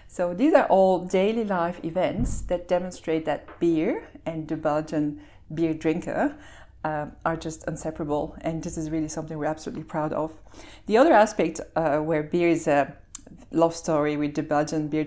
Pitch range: 155-180 Hz